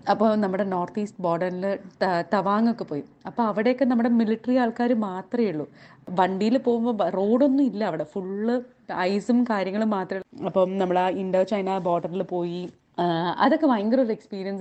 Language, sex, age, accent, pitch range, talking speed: Malayalam, female, 20-39, native, 190-230 Hz, 150 wpm